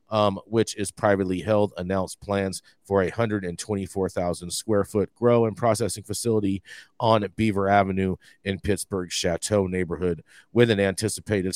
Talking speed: 125 wpm